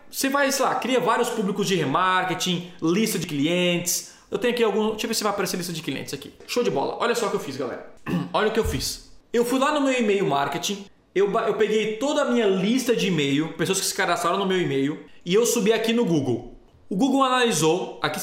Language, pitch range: Portuguese, 170-230 Hz